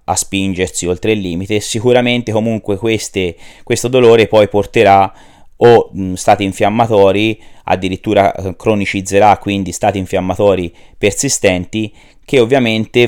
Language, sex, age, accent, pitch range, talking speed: Italian, male, 30-49, native, 95-110 Hz, 105 wpm